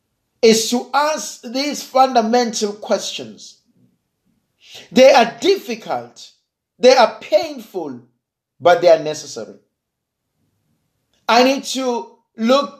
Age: 50-69